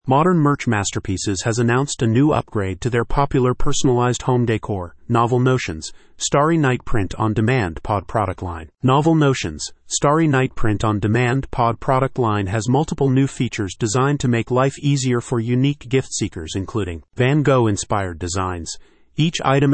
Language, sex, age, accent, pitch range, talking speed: English, male, 30-49, American, 110-135 Hz, 150 wpm